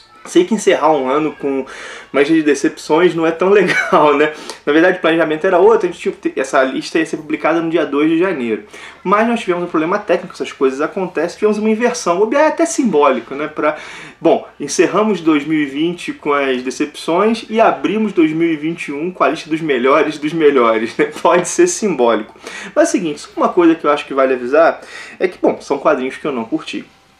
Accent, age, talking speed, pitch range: Brazilian, 20-39, 210 wpm, 140-225 Hz